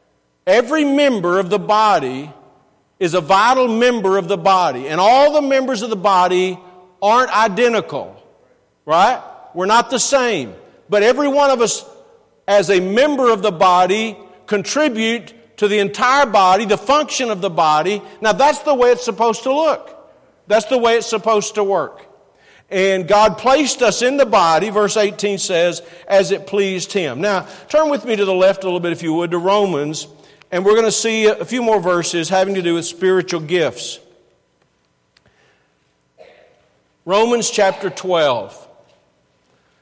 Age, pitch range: 50-69, 175-225 Hz